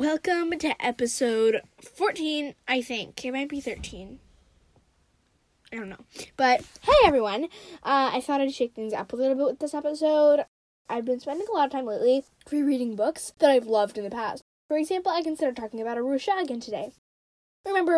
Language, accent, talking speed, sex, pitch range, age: English, American, 185 wpm, female, 230-310 Hz, 10-29